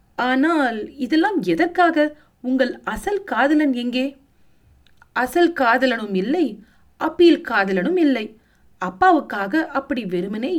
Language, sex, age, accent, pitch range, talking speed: Tamil, female, 30-49, native, 210-305 Hz, 85 wpm